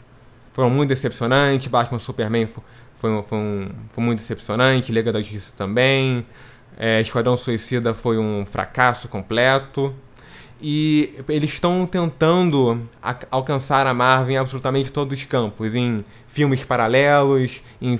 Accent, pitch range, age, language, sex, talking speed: Brazilian, 115-145 Hz, 20-39, Portuguese, male, 135 wpm